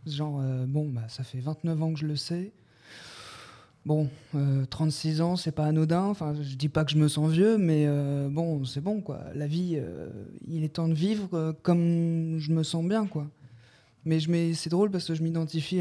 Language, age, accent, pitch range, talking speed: French, 20-39, French, 150-175 Hz, 220 wpm